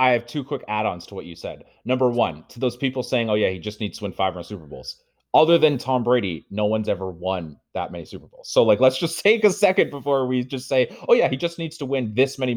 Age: 30-49